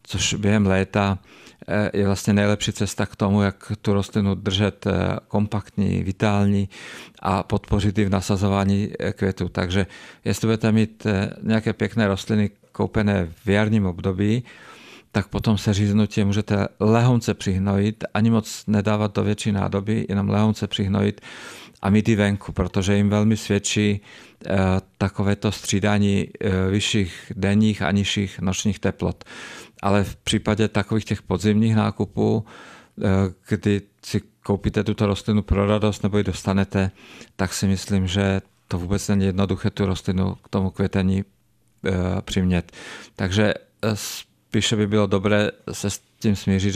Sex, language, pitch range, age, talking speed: male, Czech, 95-105 Hz, 50-69, 135 wpm